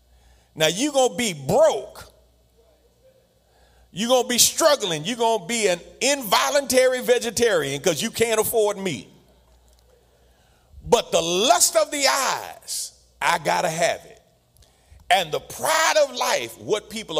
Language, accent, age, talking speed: English, American, 40-59, 145 wpm